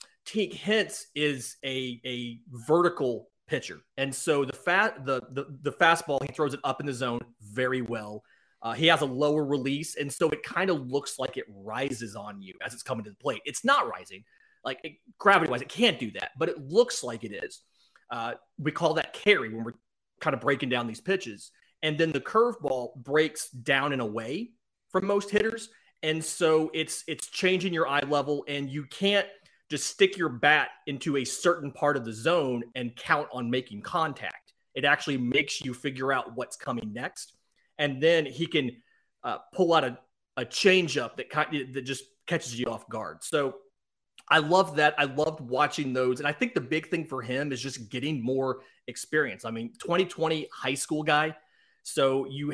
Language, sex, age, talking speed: English, male, 30-49, 195 wpm